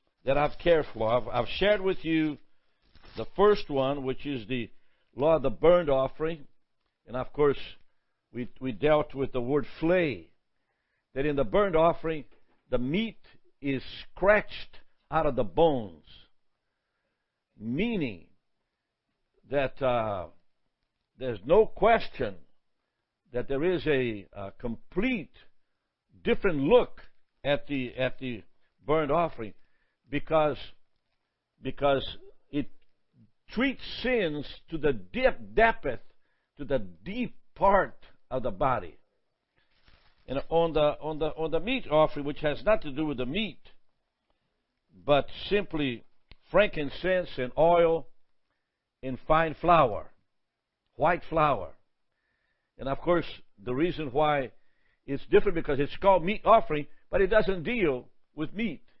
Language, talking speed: English, 125 wpm